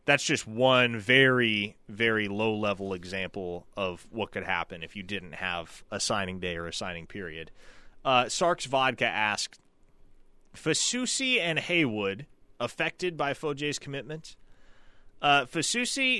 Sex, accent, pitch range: male, American, 95-135 Hz